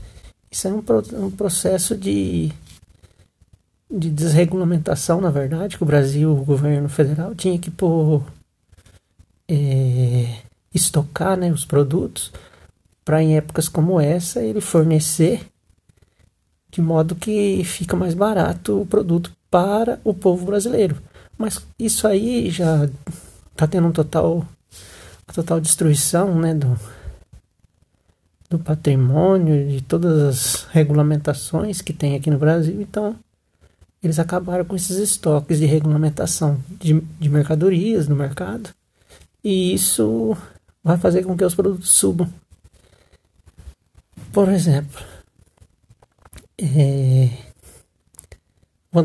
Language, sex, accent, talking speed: Portuguese, male, Brazilian, 115 wpm